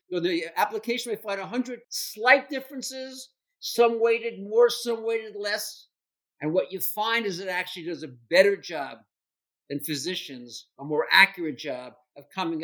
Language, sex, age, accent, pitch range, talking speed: English, male, 50-69, American, 165-230 Hz, 160 wpm